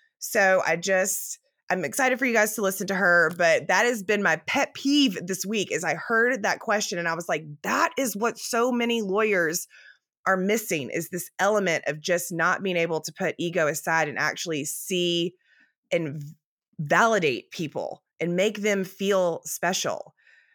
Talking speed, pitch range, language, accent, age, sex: 180 wpm, 150-200 Hz, English, American, 20-39, female